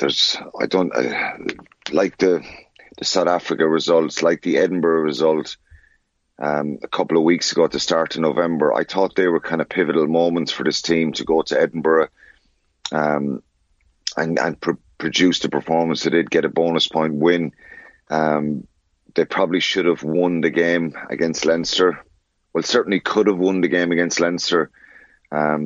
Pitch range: 80-85 Hz